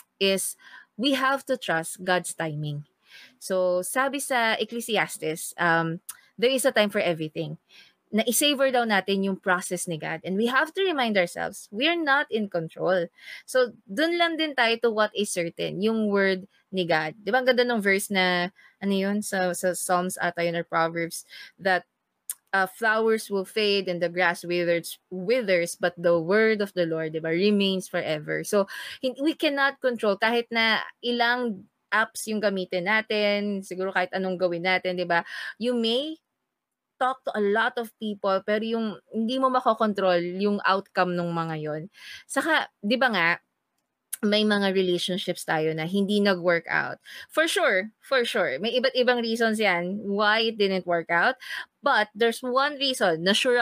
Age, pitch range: 20-39, 180-235 Hz